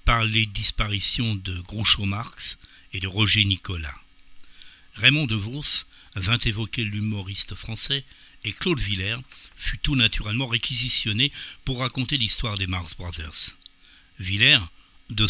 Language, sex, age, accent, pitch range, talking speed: French, male, 60-79, French, 95-125 Hz, 125 wpm